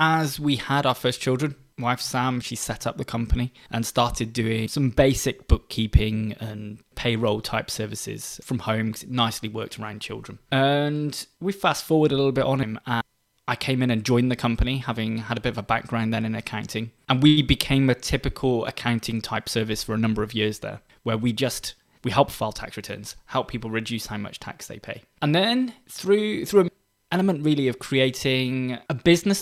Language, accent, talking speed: English, British, 200 wpm